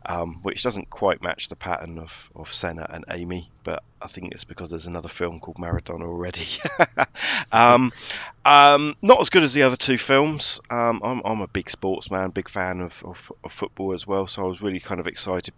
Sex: male